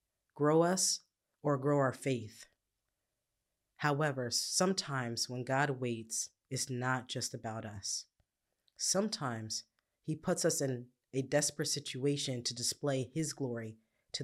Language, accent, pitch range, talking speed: English, American, 115-145 Hz, 120 wpm